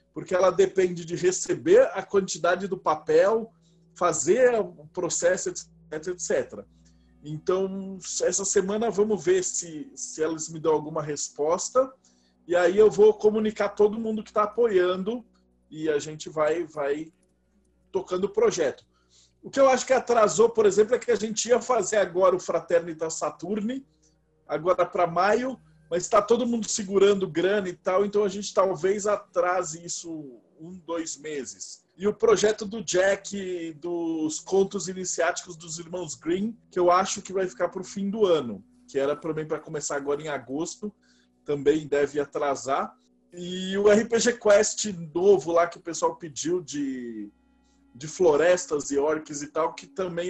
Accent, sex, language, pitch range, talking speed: Brazilian, male, Portuguese, 155-210 Hz, 160 wpm